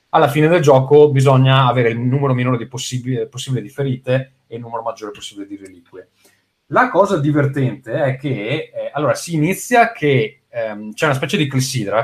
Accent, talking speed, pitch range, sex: native, 180 wpm, 120-150 Hz, male